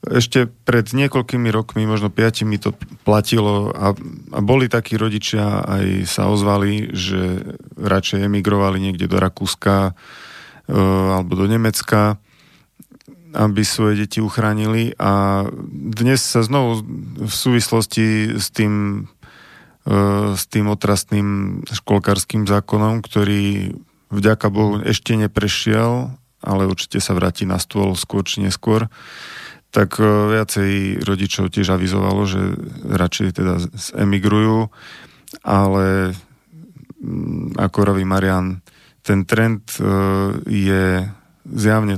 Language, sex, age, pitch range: Slovak, male, 40-59, 95-110 Hz